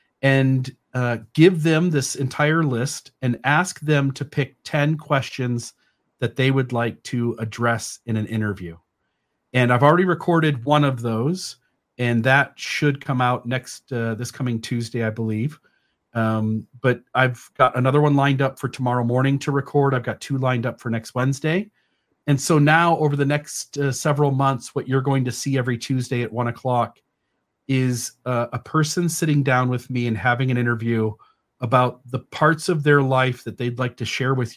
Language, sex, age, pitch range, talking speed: English, male, 40-59, 120-140 Hz, 185 wpm